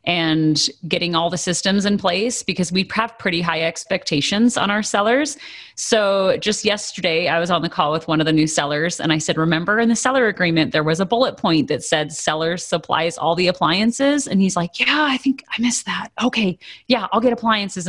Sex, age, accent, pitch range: female, 30-49, American, 165-220 Hz